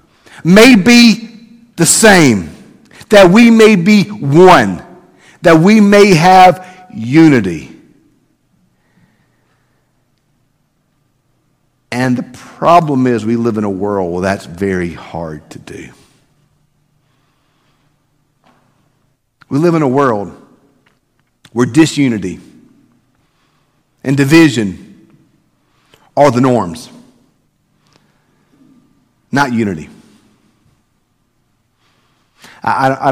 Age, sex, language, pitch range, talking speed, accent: 50-69, male, English, 110-150 Hz, 80 wpm, American